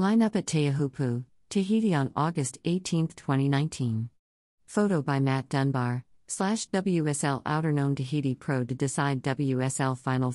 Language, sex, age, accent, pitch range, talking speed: English, female, 50-69, American, 130-155 Hz, 135 wpm